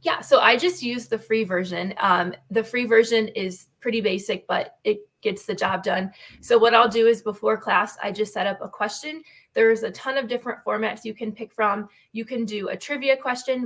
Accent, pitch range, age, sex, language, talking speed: American, 200-240 Hz, 20-39, female, English, 220 wpm